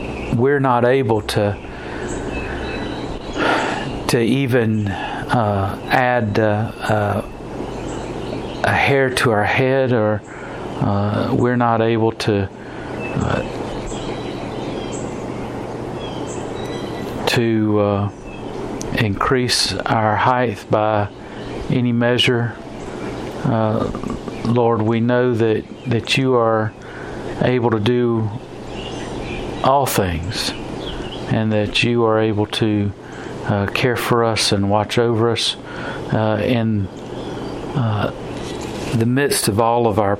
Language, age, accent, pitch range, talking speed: English, 50-69, American, 105-120 Hz, 100 wpm